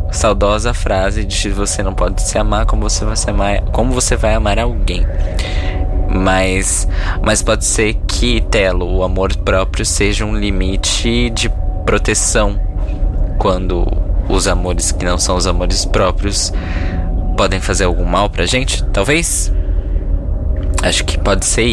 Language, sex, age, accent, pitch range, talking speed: Portuguese, male, 20-39, Brazilian, 85-100 Hz, 145 wpm